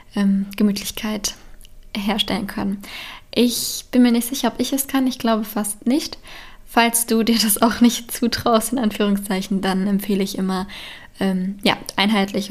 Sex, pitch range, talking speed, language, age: female, 205-235 Hz, 150 wpm, German, 10-29